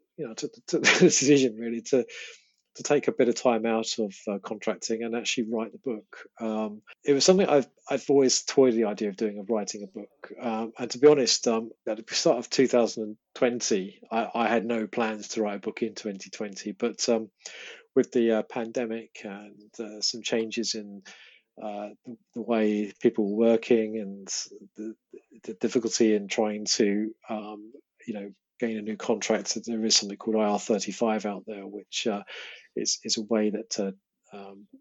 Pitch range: 105-120 Hz